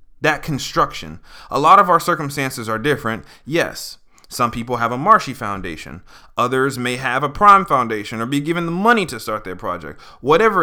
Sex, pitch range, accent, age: male, 110-155 Hz, American, 20-39